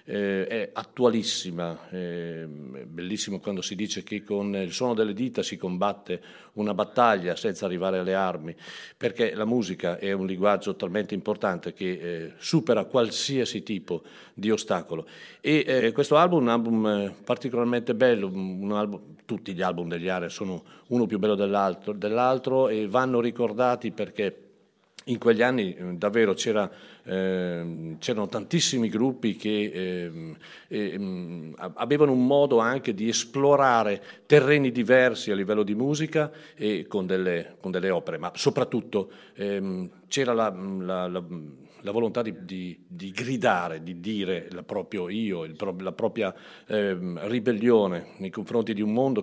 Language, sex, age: Italian, male, 50-69